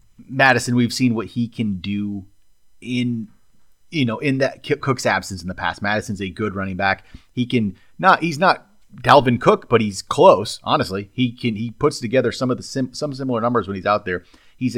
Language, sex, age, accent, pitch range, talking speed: English, male, 30-49, American, 95-125 Hz, 205 wpm